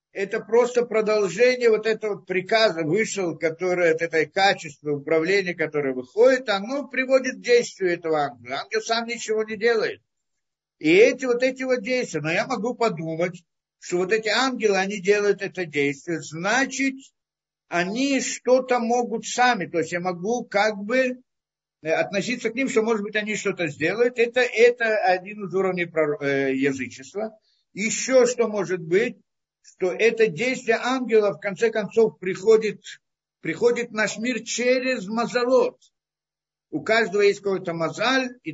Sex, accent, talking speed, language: male, native, 145 wpm, Russian